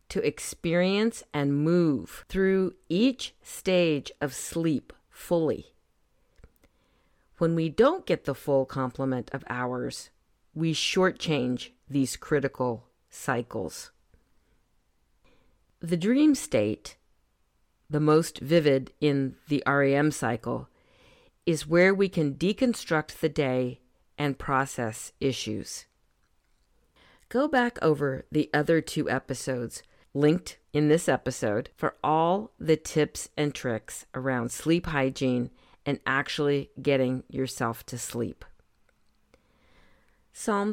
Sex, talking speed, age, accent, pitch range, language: female, 105 wpm, 50-69, American, 130-170 Hz, English